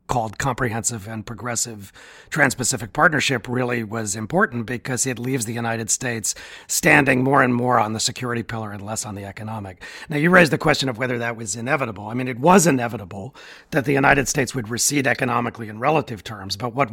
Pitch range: 115-135 Hz